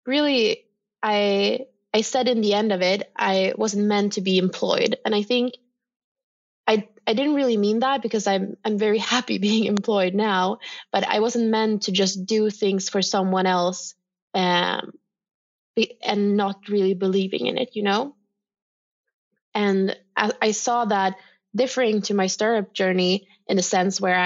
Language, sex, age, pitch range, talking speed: English, female, 20-39, 190-220 Hz, 165 wpm